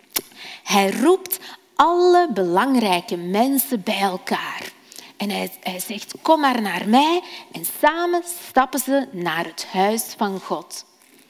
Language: Dutch